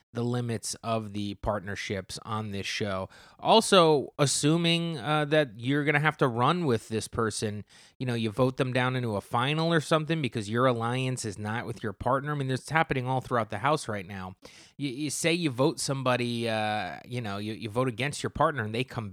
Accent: American